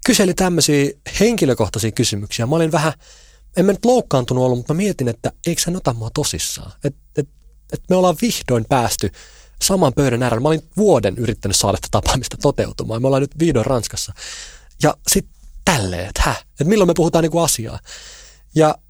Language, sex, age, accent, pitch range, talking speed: Finnish, male, 30-49, native, 105-155 Hz, 170 wpm